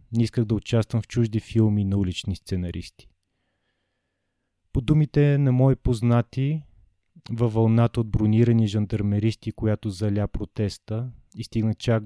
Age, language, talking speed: 20-39, Bulgarian, 130 wpm